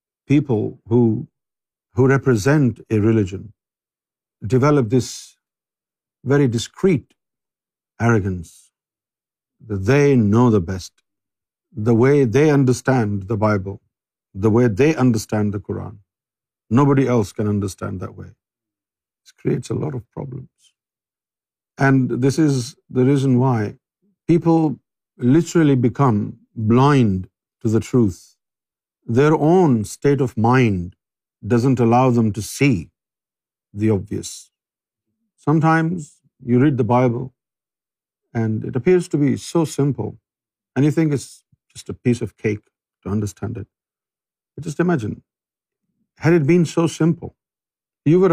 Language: Urdu